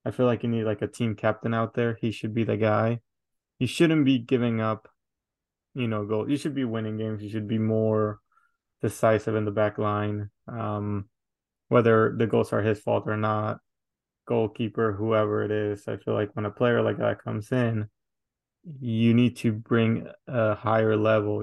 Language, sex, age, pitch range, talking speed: English, male, 20-39, 105-120 Hz, 190 wpm